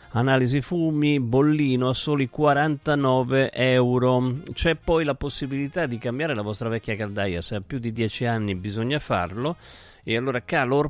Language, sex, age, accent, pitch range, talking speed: Italian, male, 50-69, native, 110-145 Hz, 155 wpm